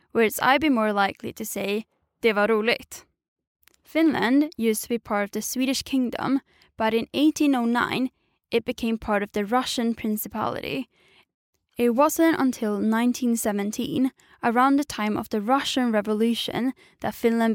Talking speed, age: 145 wpm, 10-29